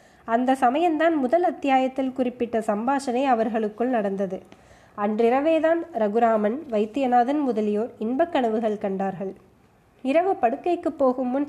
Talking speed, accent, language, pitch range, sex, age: 95 wpm, native, Tamil, 215-270 Hz, female, 20-39